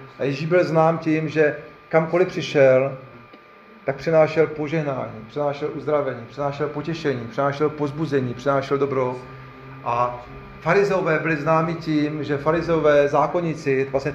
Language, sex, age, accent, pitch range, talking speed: Czech, male, 40-59, native, 135-165 Hz, 120 wpm